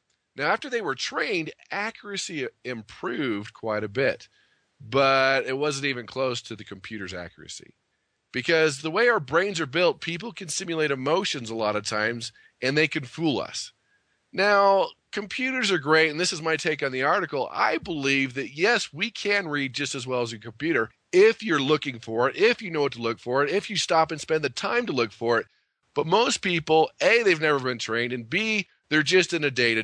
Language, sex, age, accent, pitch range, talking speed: English, male, 40-59, American, 125-175 Hz, 205 wpm